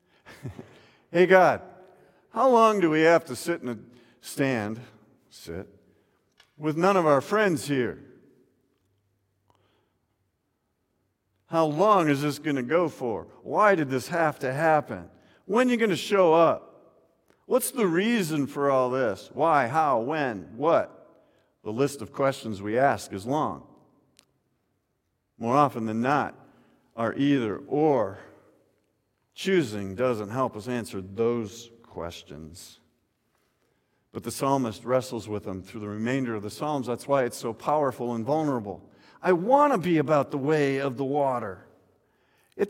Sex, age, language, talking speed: male, 50-69, English, 140 wpm